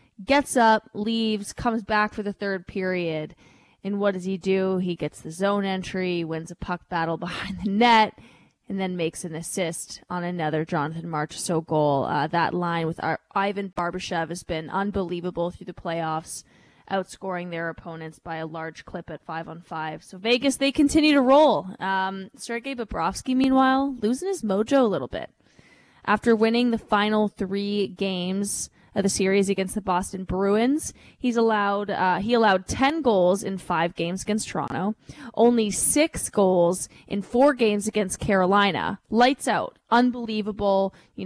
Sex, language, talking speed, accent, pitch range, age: female, English, 165 wpm, American, 180-230 Hz, 20-39